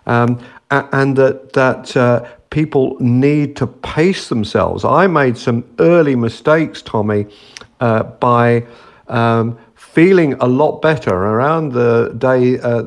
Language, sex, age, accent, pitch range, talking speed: English, male, 50-69, British, 115-140 Hz, 125 wpm